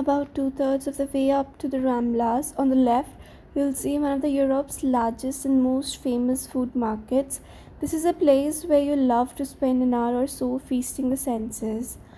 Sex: female